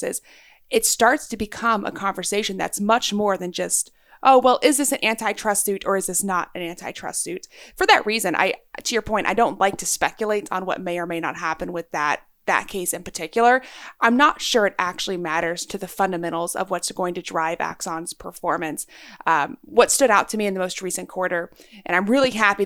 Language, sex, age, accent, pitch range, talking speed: English, female, 30-49, American, 180-235 Hz, 215 wpm